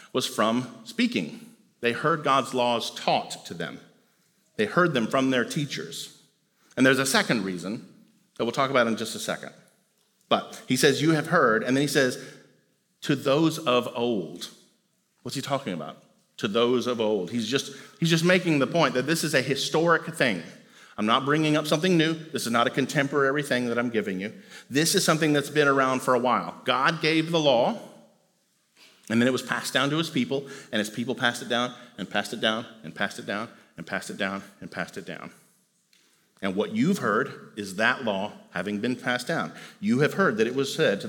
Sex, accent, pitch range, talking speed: male, American, 120-160 Hz, 210 wpm